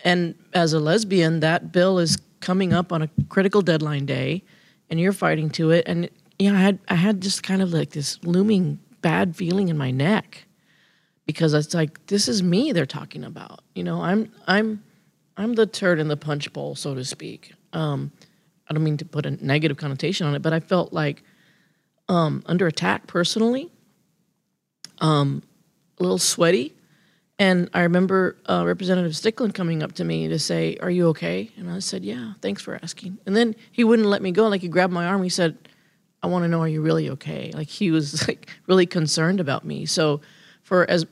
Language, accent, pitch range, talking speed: English, American, 155-190 Hz, 200 wpm